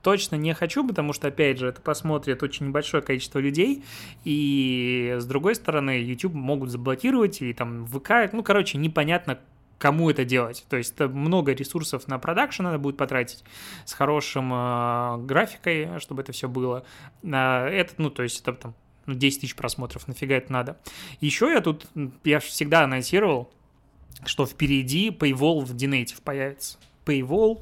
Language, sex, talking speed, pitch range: Russian, male, 150 wpm, 130-160 Hz